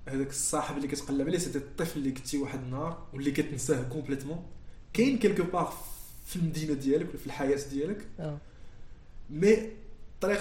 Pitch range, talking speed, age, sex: 135-175 Hz, 140 wpm, 20-39, male